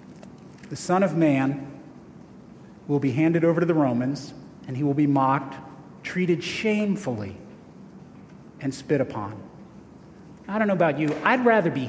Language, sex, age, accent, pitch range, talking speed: English, male, 40-59, American, 135-185 Hz, 145 wpm